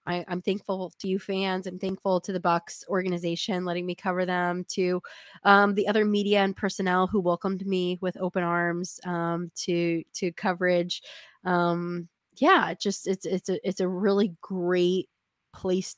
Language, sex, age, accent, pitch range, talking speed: English, female, 20-39, American, 175-210 Hz, 170 wpm